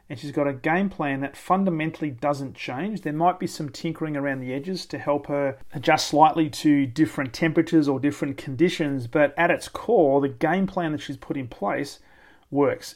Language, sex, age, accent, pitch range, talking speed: English, male, 30-49, Australian, 140-160 Hz, 195 wpm